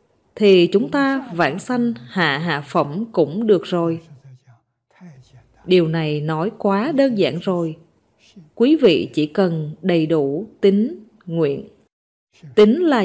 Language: Vietnamese